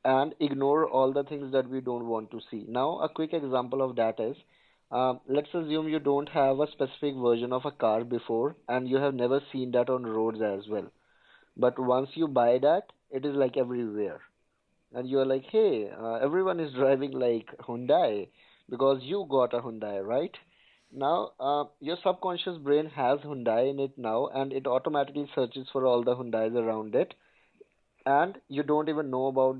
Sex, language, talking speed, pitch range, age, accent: male, English, 185 wpm, 120-145 Hz, 20-39, Indian